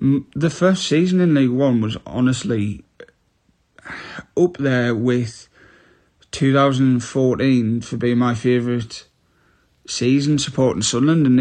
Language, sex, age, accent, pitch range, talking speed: English, male, 30-49, British, 115-135 Hz, 105 wpm